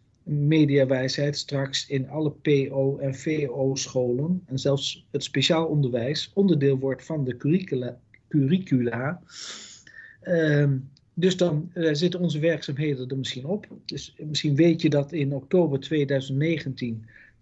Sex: male